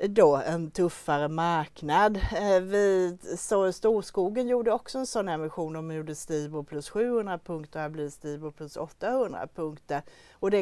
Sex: female